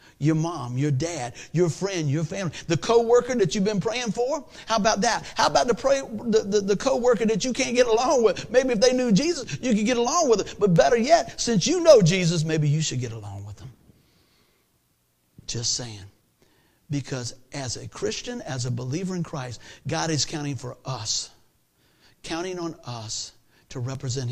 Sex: male